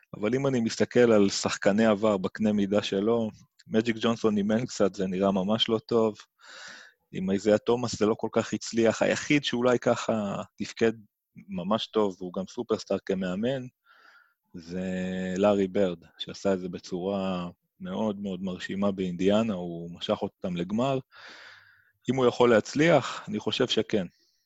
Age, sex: 30-49, male